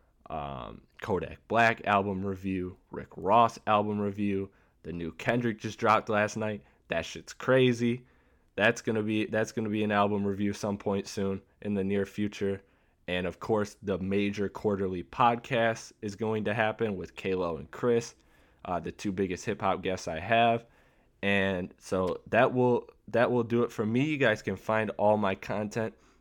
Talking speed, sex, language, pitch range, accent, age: 170 wpm, male, English, 95-110 Hz, American, 20-39